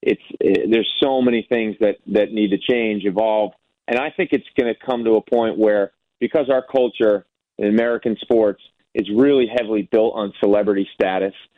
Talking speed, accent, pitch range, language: 180 wpm, American, 105-120 Hz, English